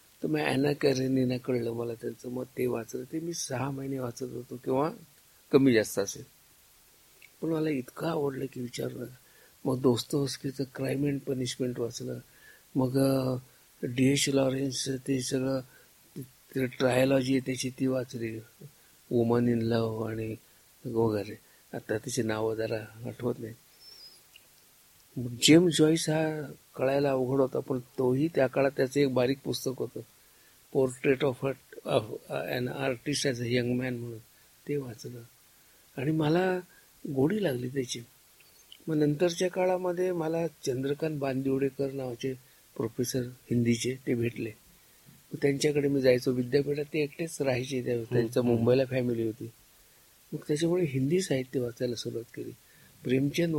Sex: male